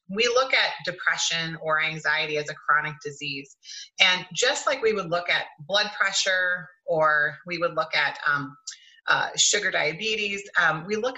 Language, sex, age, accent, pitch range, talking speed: English, female, 30-49, American, 160-200 Hz, 165 wpm